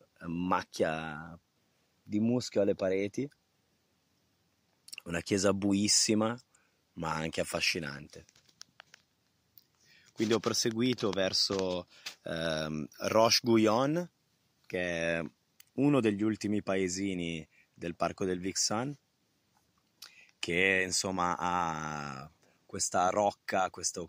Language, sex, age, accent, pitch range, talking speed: Italian, male, 20-39, native, 95-120 Hz, 80 wpm